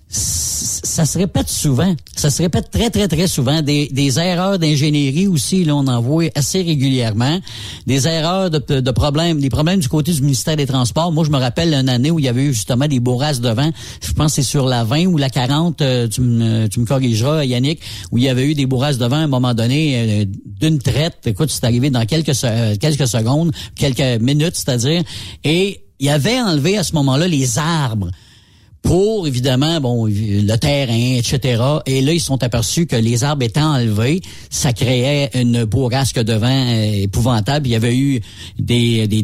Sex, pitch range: male, 115-150 Hz